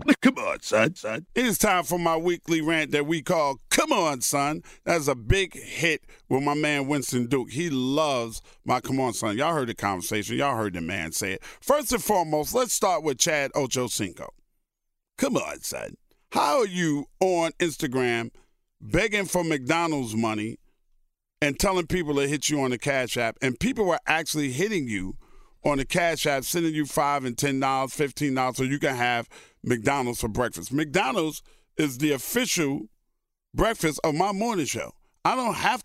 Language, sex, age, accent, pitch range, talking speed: English, male, 40-59, American, 130-175 Hz, 180 wpm